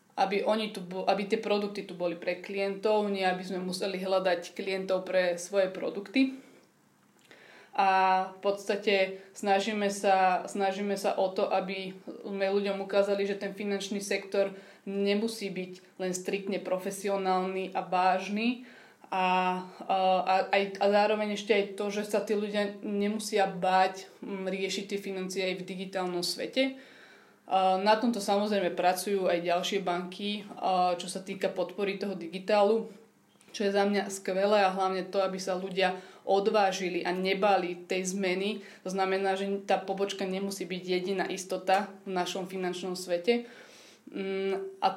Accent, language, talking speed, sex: Croatian, English, 145 wpm, female